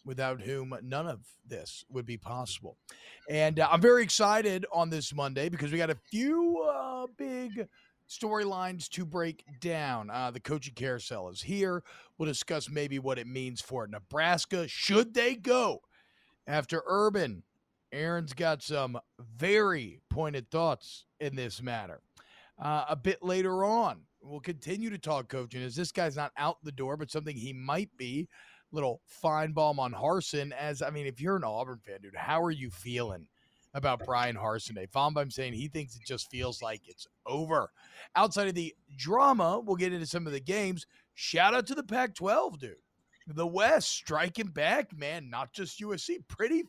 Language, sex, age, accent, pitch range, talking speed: English, male, 40-59, American, 130-190 Hz, 175 wpm